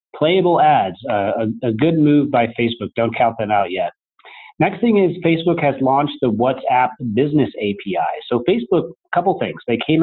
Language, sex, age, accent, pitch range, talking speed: English, male, 30-49, American, 110-140 Hz, 185 wpm